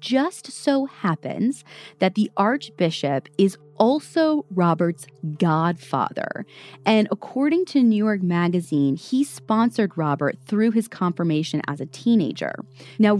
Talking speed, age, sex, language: 120 wpm, 20-39, female, English